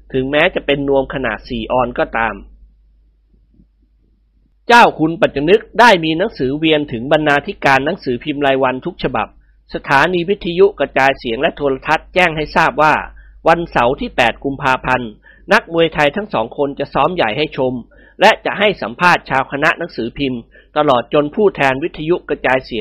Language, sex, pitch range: Thai, male, 130-165 Hz